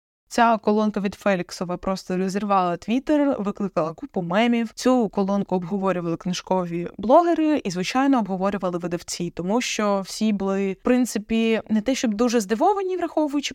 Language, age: Ukrainian, 20-39